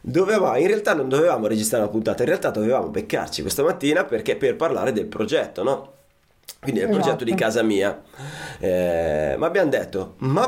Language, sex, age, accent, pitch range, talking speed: Italian, male, 30-49, native, 110-155 Hz, 185 wpm